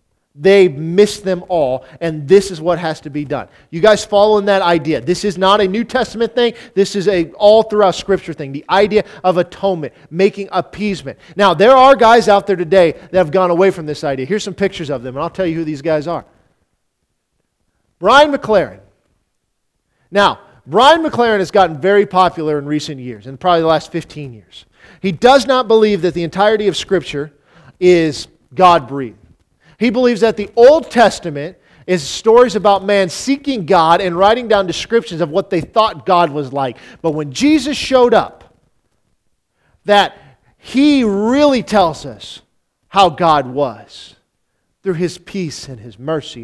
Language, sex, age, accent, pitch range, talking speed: English, male, 40-59, American, 160-210 Hz, 175 wpm